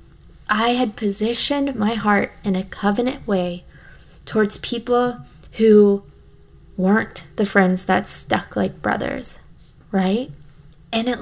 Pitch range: 200-240 Hz